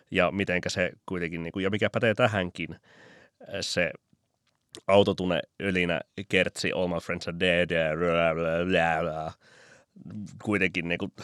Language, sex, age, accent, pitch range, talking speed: Finnish, male, 30-49, native, 85-100 Hz, 95 wpm